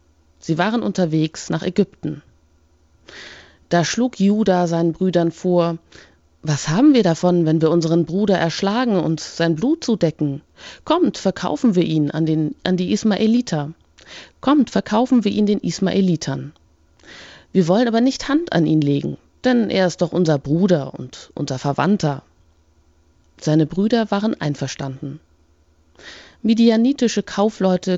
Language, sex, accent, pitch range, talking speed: German, female, German, 135-195 Hz, 135 wpm